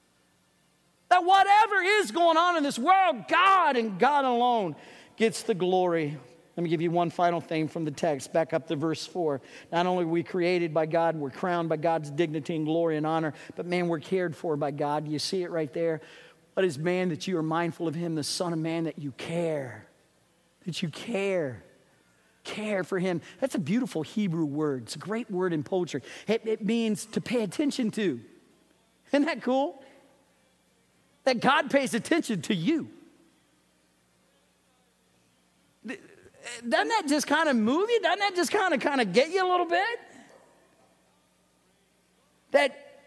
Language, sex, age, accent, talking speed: English, male, 50-69, American, 175 wpm